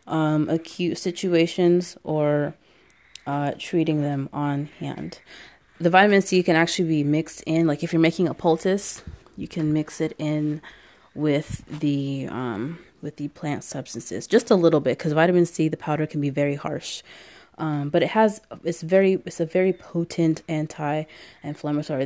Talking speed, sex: 160 wpm, female